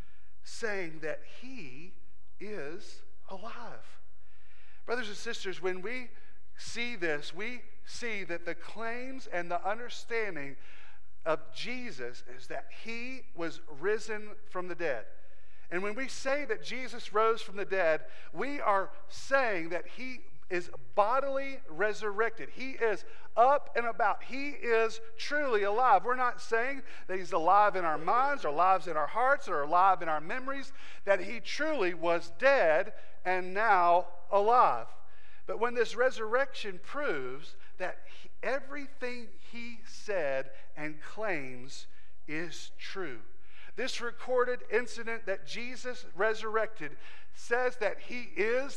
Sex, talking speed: male, 135 wpm